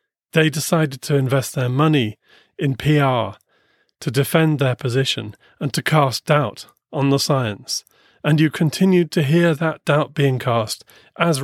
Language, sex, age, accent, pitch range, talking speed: English, male, 30-49, British, 125-155 Hz, 150 wpm